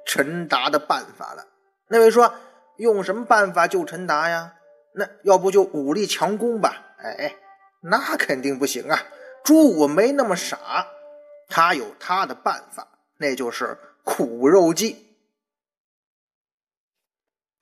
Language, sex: Chinese, male